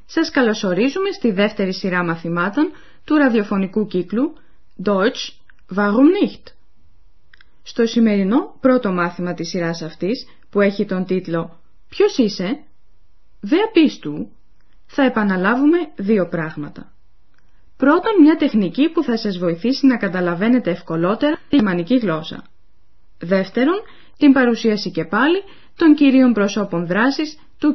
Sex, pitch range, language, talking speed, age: female, 180-290 Hz, Greek, 115 wpm, 20-39